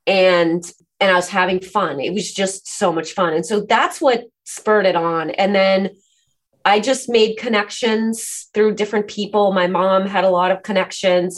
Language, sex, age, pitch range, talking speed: English, female, 30-49, 180-205 Hz, 185 wpm